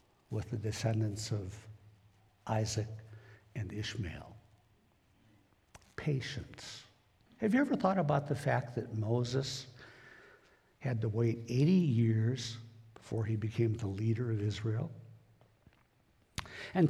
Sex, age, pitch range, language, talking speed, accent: male, 60-79, 110-140 Hz, English, 105 wpm, American